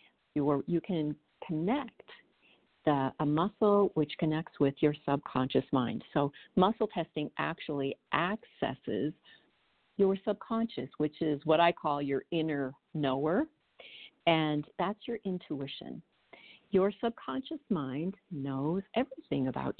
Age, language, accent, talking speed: 50-69, English, American, 110 wpm